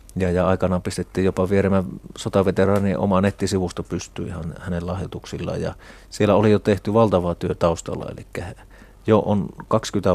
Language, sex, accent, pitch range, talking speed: Finnish, male, native, 90-100 Hz, 140 wpm